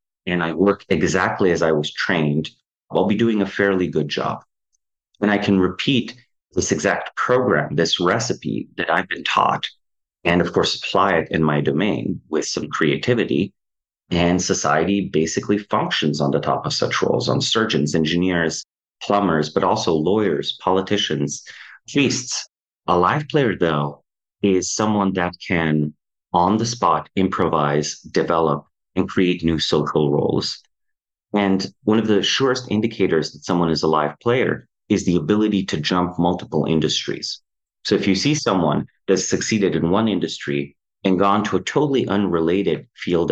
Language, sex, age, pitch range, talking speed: English, male, 30-49, 80-100 Hz, 155 wpm